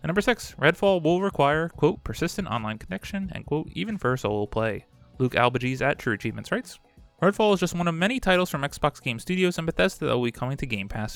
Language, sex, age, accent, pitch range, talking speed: English, male, 20-39, American, 115-170 Hz, 225 wpm